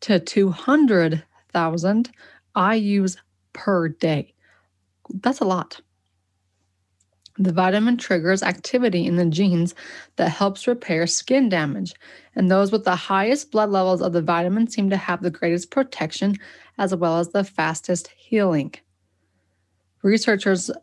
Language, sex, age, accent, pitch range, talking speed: English, female, 20-39, American, 170-200 Hz, 125 wpm